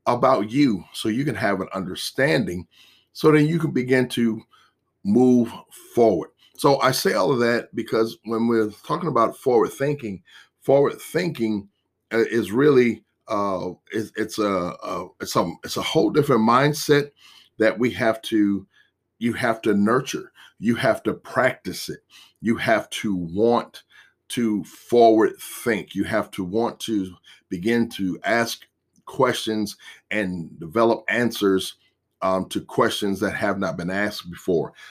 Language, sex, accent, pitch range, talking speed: English, male, American, 95-120 Hz, 150 wpm